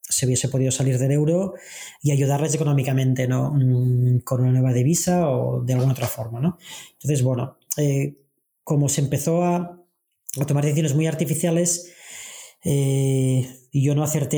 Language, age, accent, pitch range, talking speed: Spanish, 20-39, Spanish, 135-160 Hz, 155 wpm